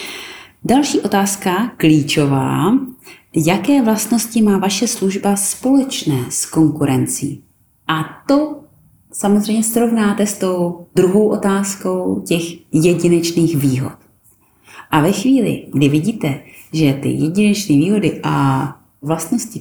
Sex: female